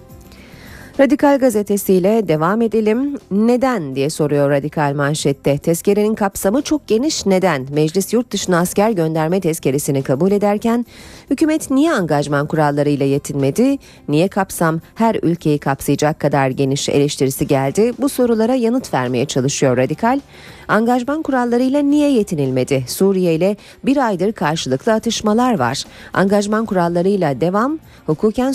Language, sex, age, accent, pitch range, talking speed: Turkish, female, 30-49, native, 150-235 Hz, 120 wpm